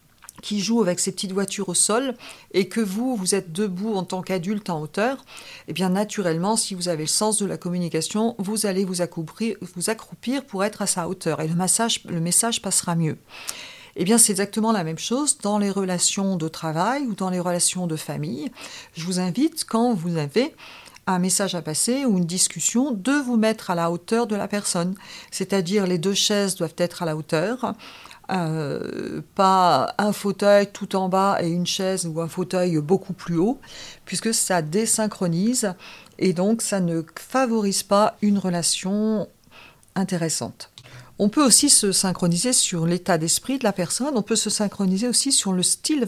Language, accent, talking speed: French, French, 190 wpm